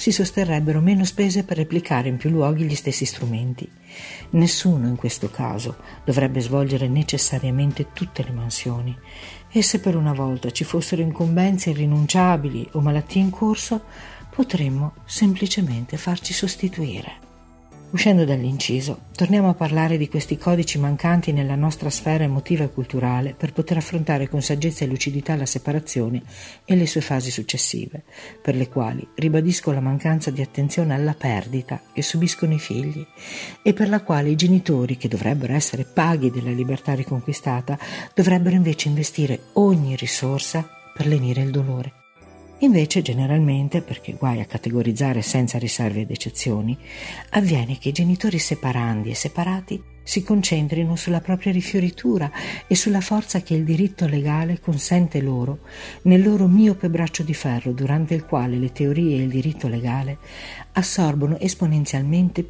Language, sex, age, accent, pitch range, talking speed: Italian, female, 50-69, native, 130-175 Hz, 145 wpm